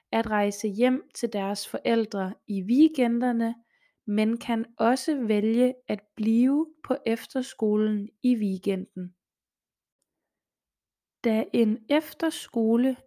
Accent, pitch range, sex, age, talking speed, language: native, 210-260 Hz, female, 20-39, 95 wpm, Danish